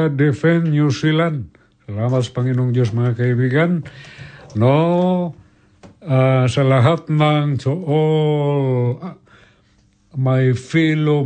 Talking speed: 65 wpm